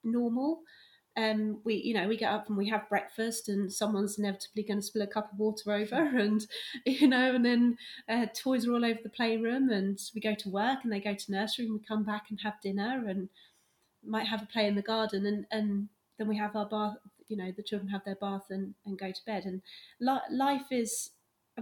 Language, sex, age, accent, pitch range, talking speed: English, female, 30-49, British, 195-240 Hz, 230 wpm